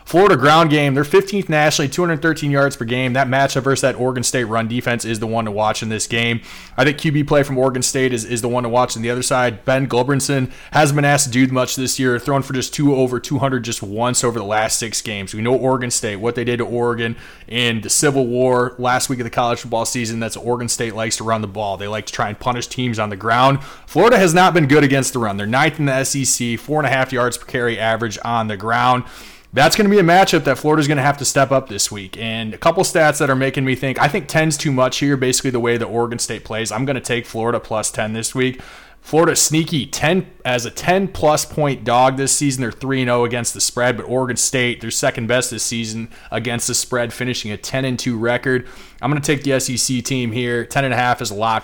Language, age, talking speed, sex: English, 20-39, 255 wpm, male